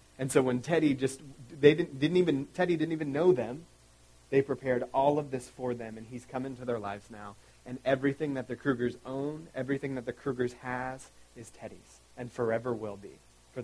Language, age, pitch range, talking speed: English, 30-49, 115-140 Hz, 200 wpm